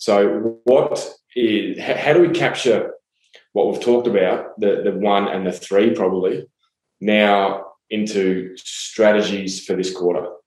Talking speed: 125 wpm